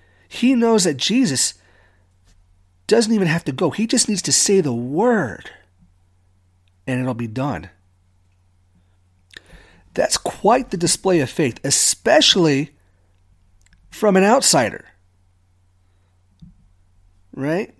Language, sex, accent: English, male, American